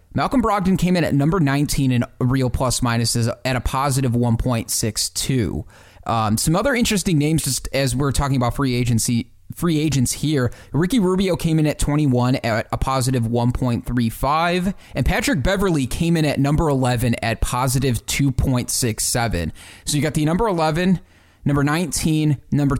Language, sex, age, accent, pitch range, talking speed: English, male, 20-39, American, 115-145 Hz, 160 wpm